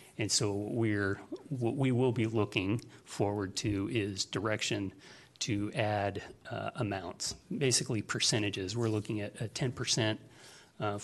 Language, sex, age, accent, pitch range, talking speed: English, male, 40-59, American, 105-125 Hz, 135 wpm